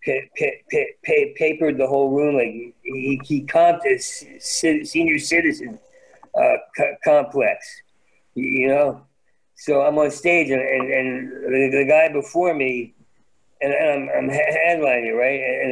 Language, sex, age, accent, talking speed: English, male, 50-69, American, 150 wpm